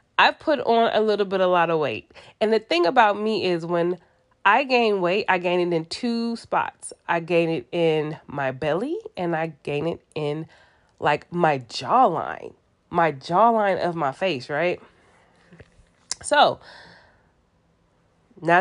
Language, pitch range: English, 160-215 Hz